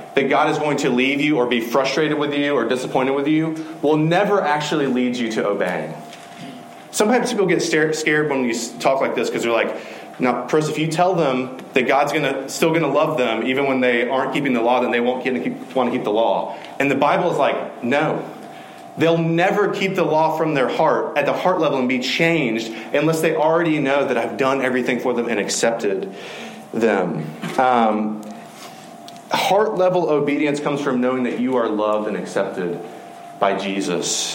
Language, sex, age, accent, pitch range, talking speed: English, male, 30-49, American, 120-160 Hz, 195 wpm